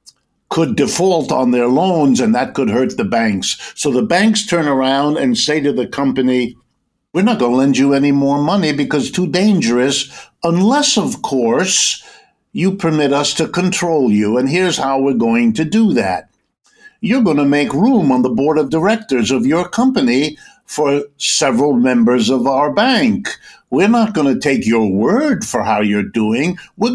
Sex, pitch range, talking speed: male, 135-215 Hz, 185 wpm